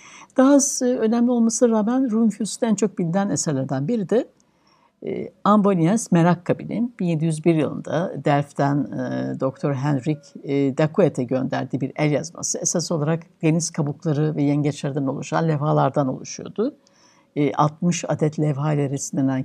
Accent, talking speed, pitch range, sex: native, 110 wpm, 150-215 Hz, female